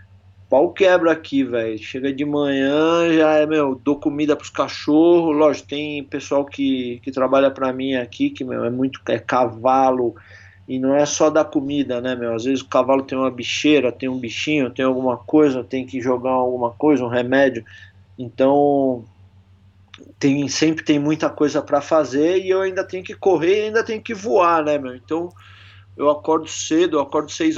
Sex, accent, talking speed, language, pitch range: male, Brazilian, 185 wpm, Portuguese, 130-160 Hz